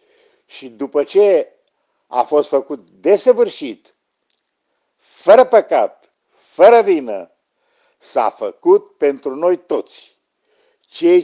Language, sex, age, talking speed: Romanian, male, 60-79, 90 wpm